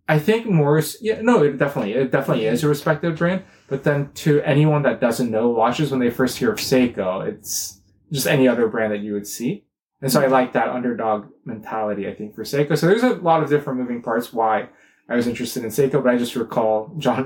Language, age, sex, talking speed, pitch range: English, 20-39, male, 230 wpm, 110-145 Hz